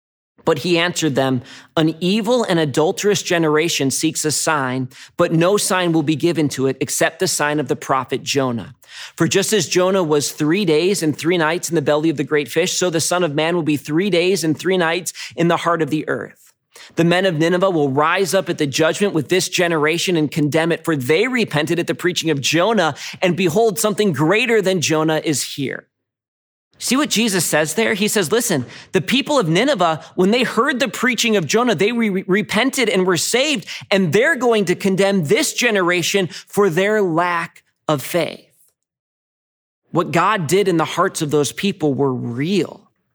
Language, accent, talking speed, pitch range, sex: English, American, 195 wpm, 145-185 Hz, male